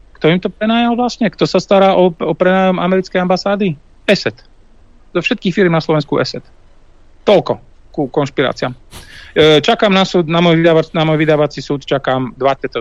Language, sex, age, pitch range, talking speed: Slovak, male, 40-59, 120-155 Hz, 170 wpm